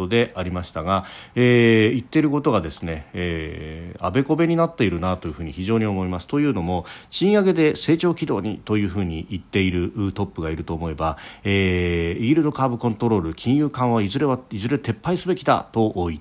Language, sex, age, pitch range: Japanese, male, 40-59, 90-125 Hz